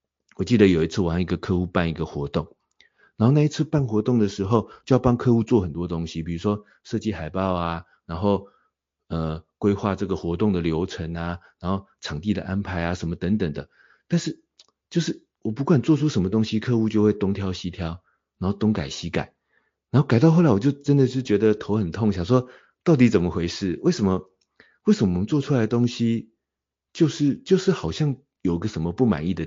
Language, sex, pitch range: Chinese, male, 85-120 Hz